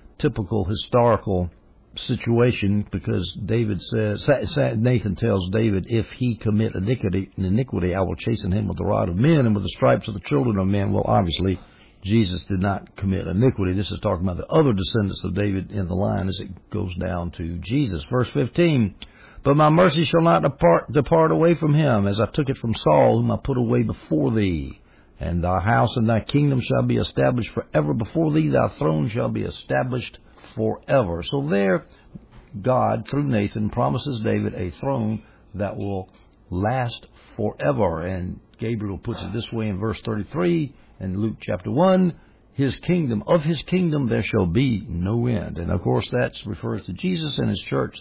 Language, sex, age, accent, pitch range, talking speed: English, male, 60-79, American, 95-125 Hz, 180 wpm